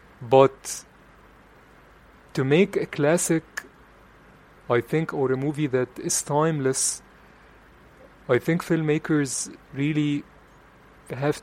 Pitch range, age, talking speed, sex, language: 125-150 Hz, 30-49, 95 wpm, male, English